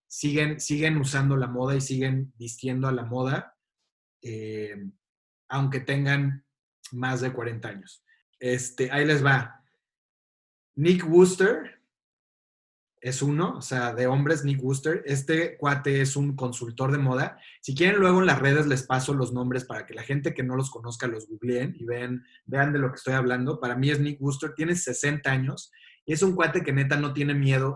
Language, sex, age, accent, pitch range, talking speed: Spanish, male, 30-49, Mexican, 125-150 Hz, 175 wpm